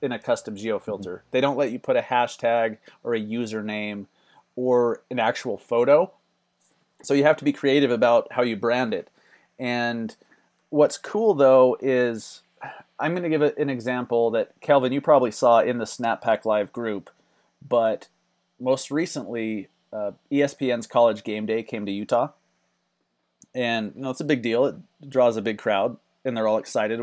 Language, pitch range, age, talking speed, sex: English, 110-130 Hz, 30-49, 175 wpm, male